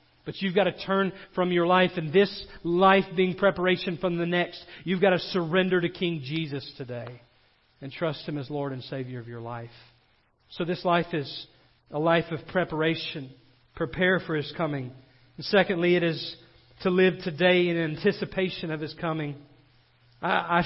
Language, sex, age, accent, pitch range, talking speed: English, male, 40-59, American, 150-190 Hz, 170 wpm